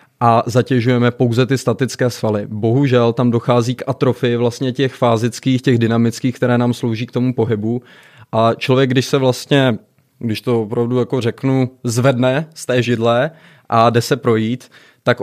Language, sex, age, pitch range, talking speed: Czech, male, 20-39, 115-130 Hz, 160 wpm